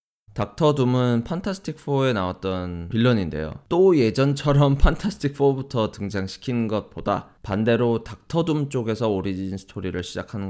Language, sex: Korean, male